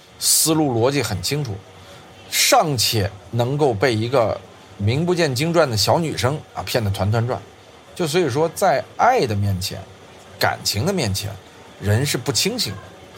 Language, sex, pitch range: Chinese, male, 95-125 Hz